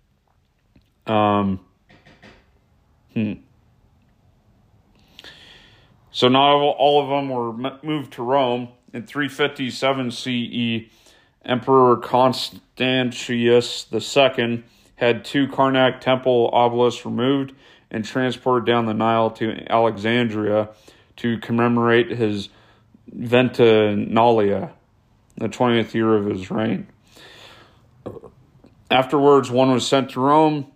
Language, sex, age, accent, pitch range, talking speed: English, male, 40-59, American, 115-130 Hz, 90 wpm